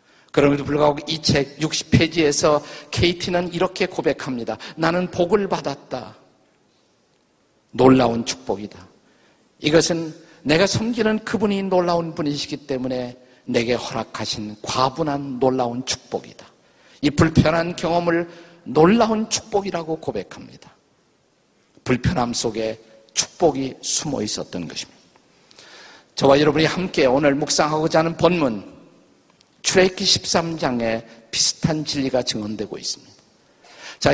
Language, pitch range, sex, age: Korean, 135-175 Hz, male, 50-69